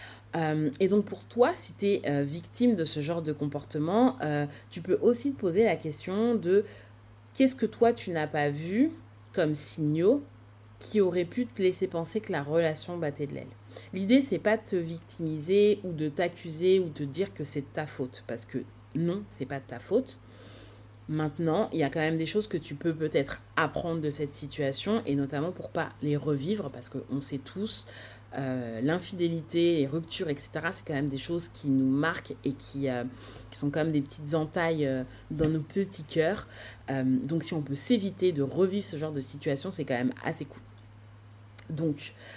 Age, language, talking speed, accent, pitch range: 30-49, French, 200 wpm, French, 130-180 Hz